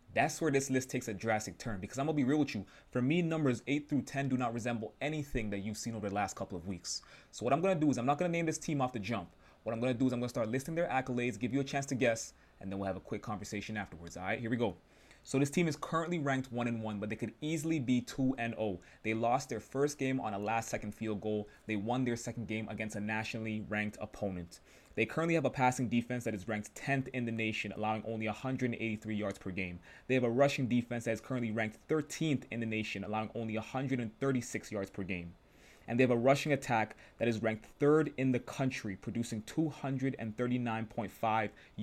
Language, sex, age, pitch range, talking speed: English, male, 20-39, 105-130 Hz, 250 wpm